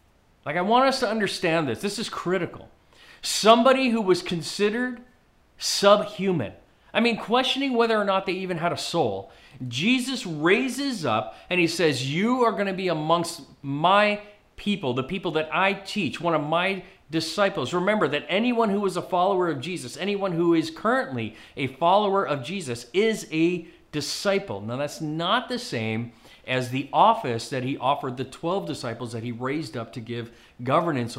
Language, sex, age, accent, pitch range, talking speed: English, male, 40-59, American, 120-195 Hz, 170 wpm